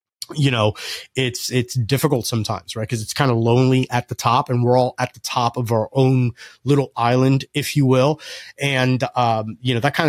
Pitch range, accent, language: 115-130 Hz, American, English